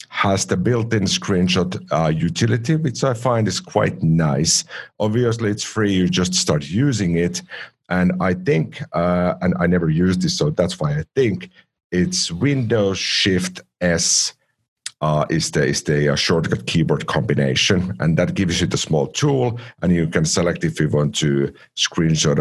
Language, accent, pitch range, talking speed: English, Finnish, 85-110 Hz, 170 wpm